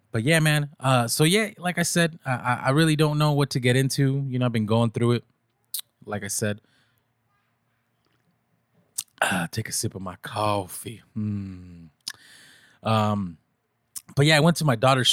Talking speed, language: 175 wpm, English